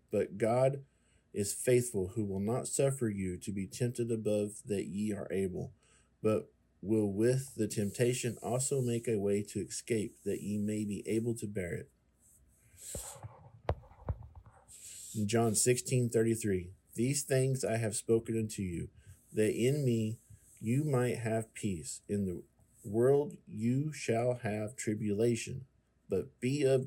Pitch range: 105-125 Hz